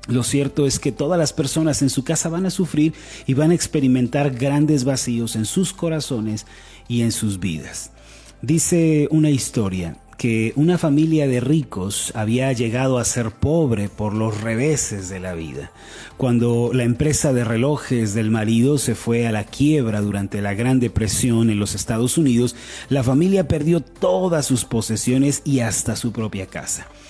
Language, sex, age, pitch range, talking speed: Spanish, male, 30-49, 115-145 Hz, 170 wpm